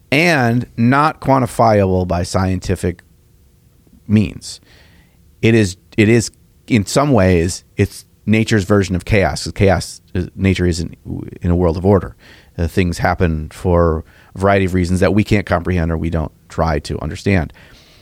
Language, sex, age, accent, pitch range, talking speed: English, male, 40-59, American, 90-125 Hz, 150 wpm